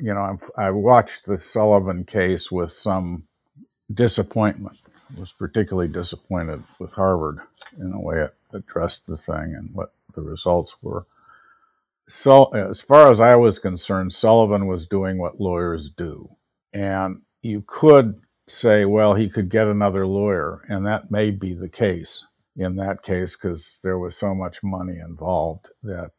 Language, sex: English, male